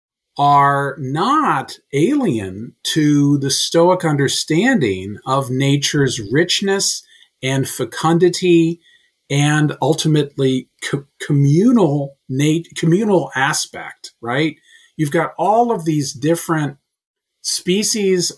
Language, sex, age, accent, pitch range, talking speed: English, male, 50-69, American, 130-170 Hz, 90 wpm